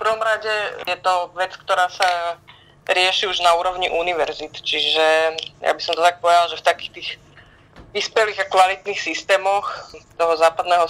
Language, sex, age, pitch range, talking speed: Slovak, female, 20-39, 165-180 Hz, 165 wpm